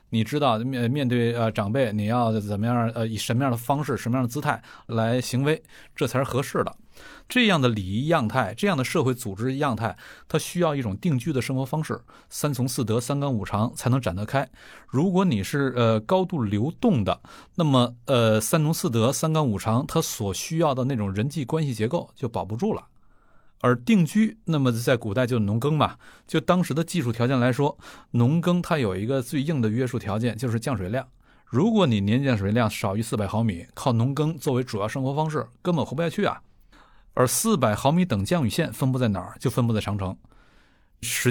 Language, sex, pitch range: Chinese, male, 110-150 Hz